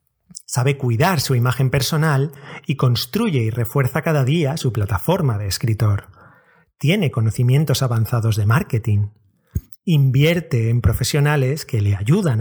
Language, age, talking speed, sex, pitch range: Spanish, 30-49, 125 wpm, male, 120-150 Hz